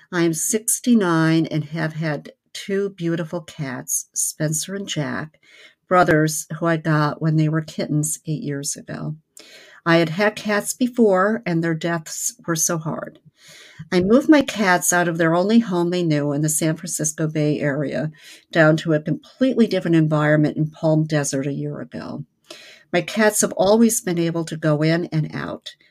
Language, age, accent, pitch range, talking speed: English, 50-69, American, 155-185 Hz, 170 wpm